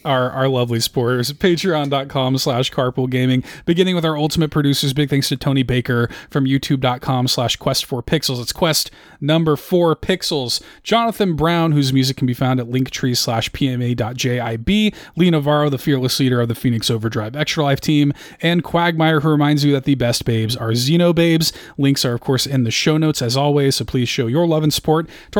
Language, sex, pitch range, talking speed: English, male, 130-175 Hz, 190 wpm